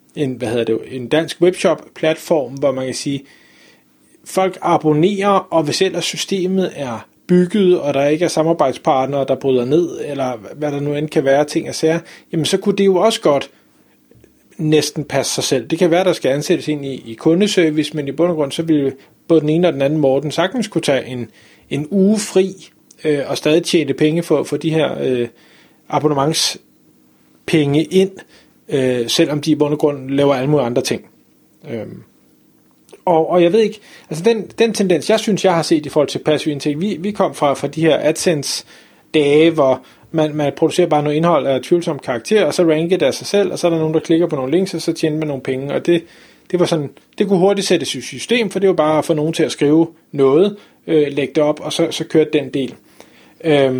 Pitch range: 140-175 Hz